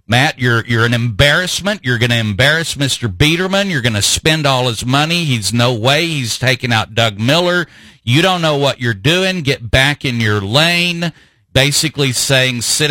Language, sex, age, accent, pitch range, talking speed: English, male, 50-69, American, 115-150 Hz, 185 wpm